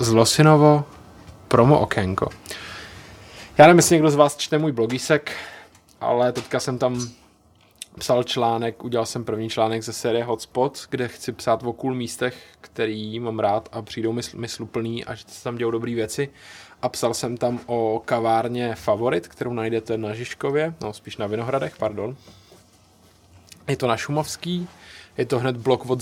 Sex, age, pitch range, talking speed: male, 20-39, 115-130 Hz, 160 wpm